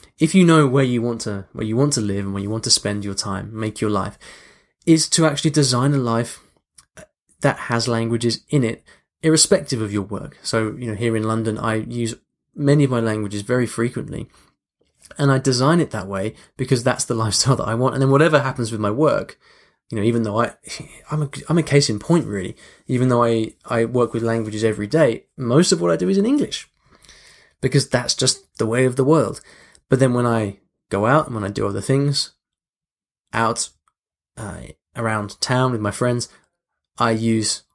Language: English